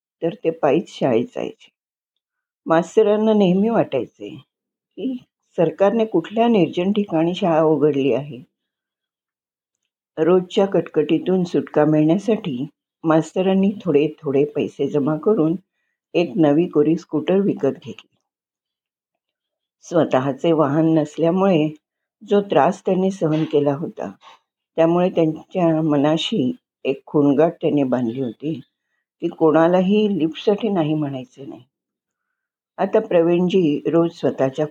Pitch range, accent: 150-190 Hz, native